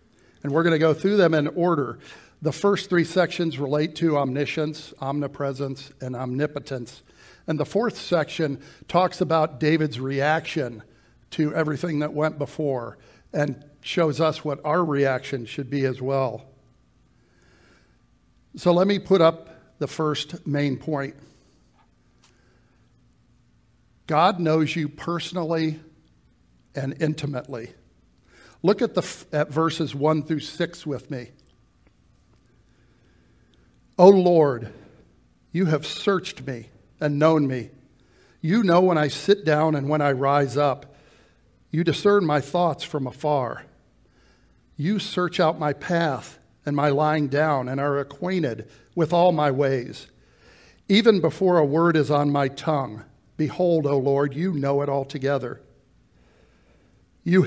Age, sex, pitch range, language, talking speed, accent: 60-79, male, 135-165 Hz, English, 130 wpm, American